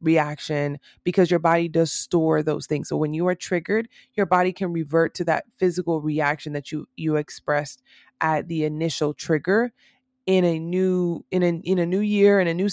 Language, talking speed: English, 195 wpm